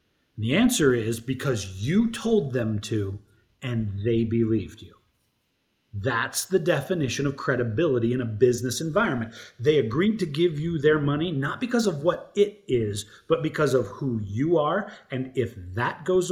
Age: 30-49